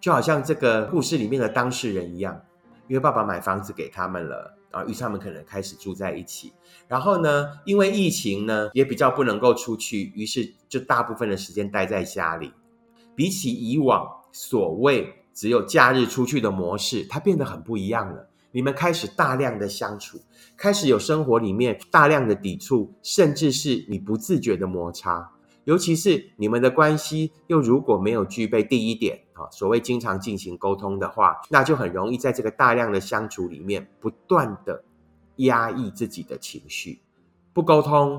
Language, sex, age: Chinese, male, 30-49